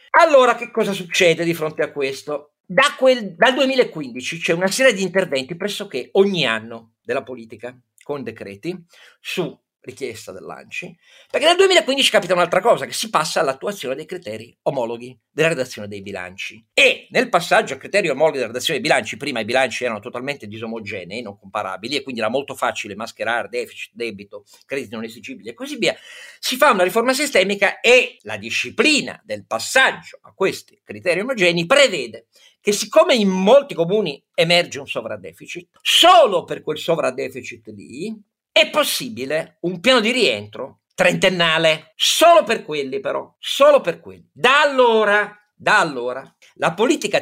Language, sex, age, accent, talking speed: Italian, male, 50-69, native, 155 wpm